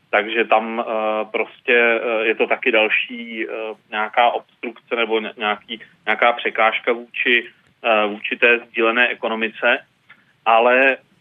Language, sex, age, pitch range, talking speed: Czech, male, 30-49, 110-130 Hz, 95 wpm